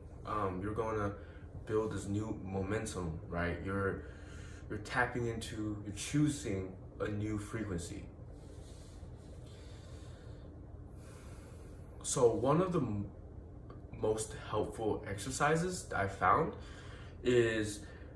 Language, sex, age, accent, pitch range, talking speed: English, male, 20-39, American, 95-110 Hz, 95 wpm